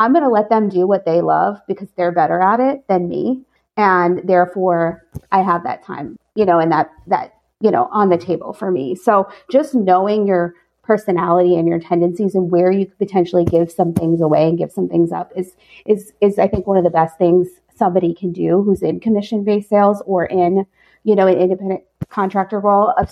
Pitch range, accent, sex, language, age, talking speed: 170-200 Hz, American, female, English, 30-49, 215 wpm